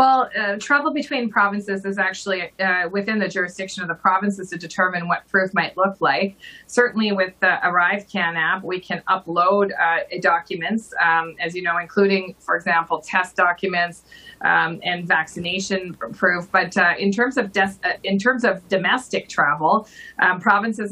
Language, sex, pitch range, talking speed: English, female, 175-200 Hz, 170 wpm